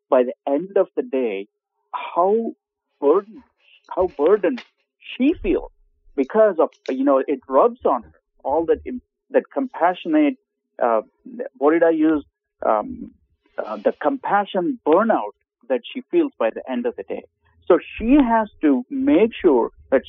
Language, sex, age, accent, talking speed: English, male, 50-69, Indian, 150 wpm